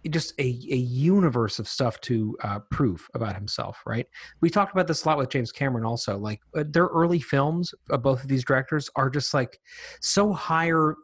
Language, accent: English, American